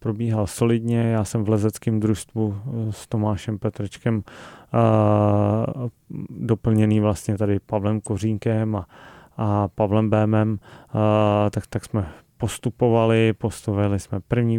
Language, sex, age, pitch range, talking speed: Czech, male, 30-49, 105-115 Hz, 110 wpm